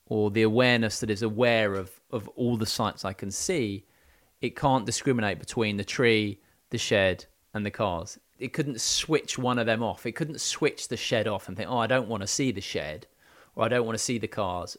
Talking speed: 225 wpm